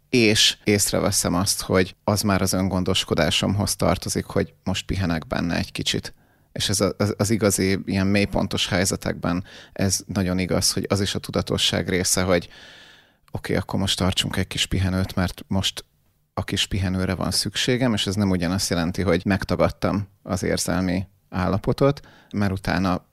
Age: 30-49